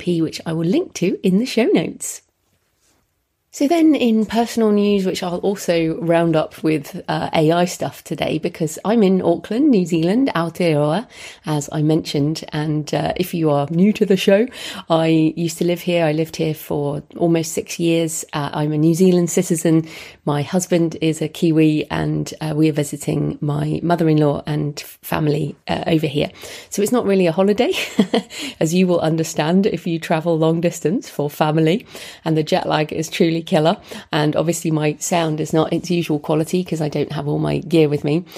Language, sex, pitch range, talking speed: English, female, 155-195 Hz, 190 wpm